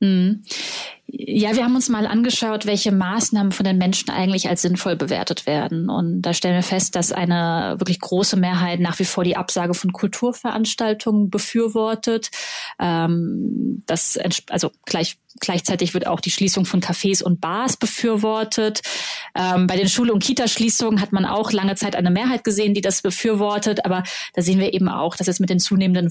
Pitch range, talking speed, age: 185-220 Hz, 175 wpm, 30-49